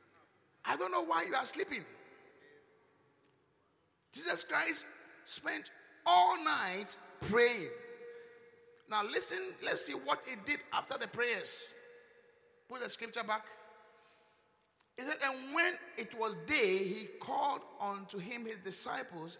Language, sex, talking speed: English, male, 125 wpm